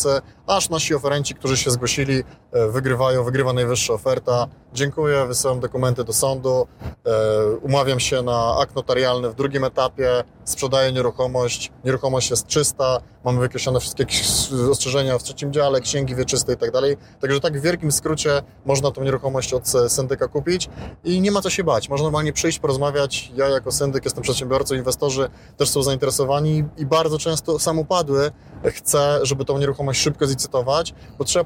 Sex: male